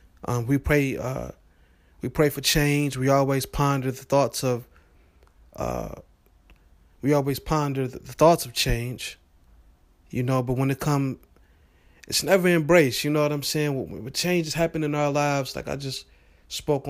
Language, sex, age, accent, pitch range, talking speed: English, male, 30-49, American, 110-145 Hz, 170 wpm